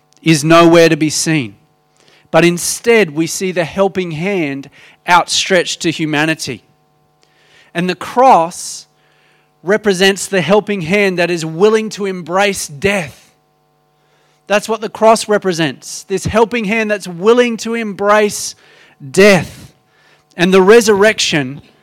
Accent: Australian